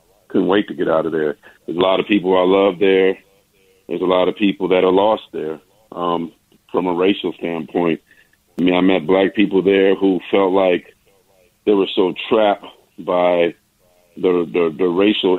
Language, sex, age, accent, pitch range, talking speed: English, male, 40-59, American, 90-100 Hz, 185 wpm